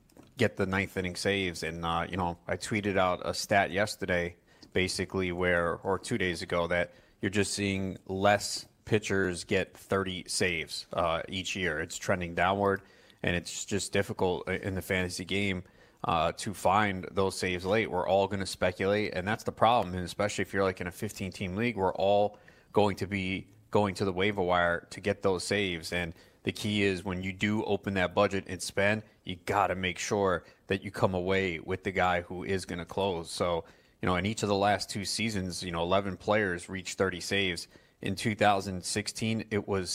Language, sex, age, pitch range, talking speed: English, male, 30-49, 90-105 Hz, 200 wpm